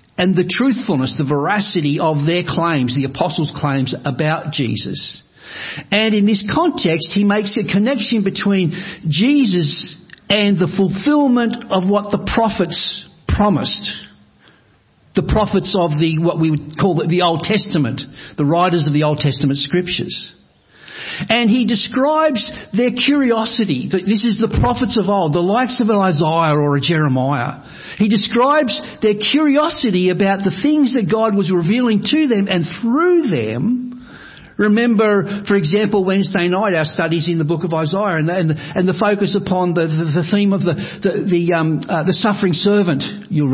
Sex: male